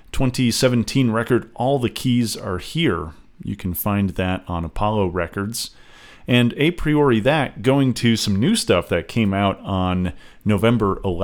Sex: male